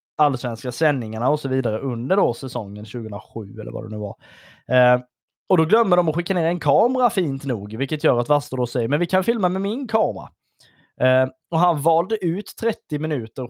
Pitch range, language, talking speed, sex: 125-165 Hz, Swedish, 210 wpm, male